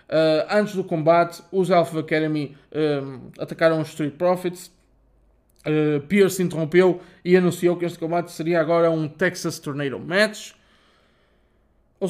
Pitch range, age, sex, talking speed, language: 150-185 Hz, 20-39, male, 135 wpm, Portuguese